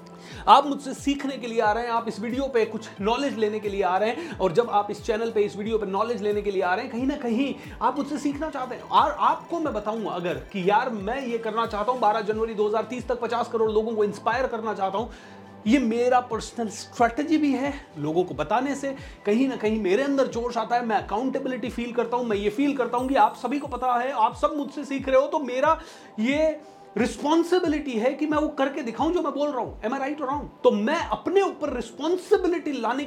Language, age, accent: Hindi, 30-49, native